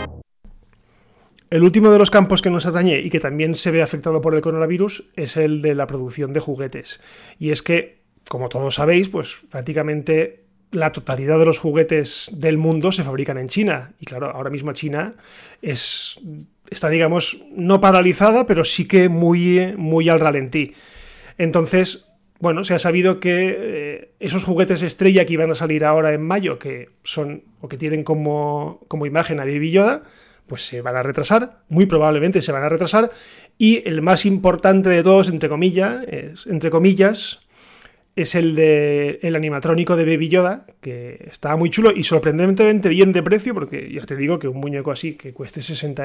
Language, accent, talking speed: Spanish, Spanish, 180 wpm